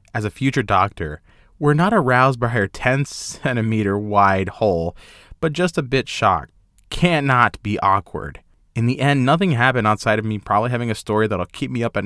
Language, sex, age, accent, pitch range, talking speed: English, male, 20-39, American, 95-130 Hz, 190 wpm